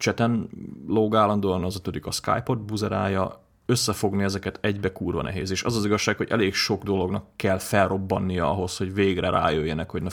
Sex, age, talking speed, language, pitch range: male, 30-49, 170 wpm, Hungarian, 90-100 Hz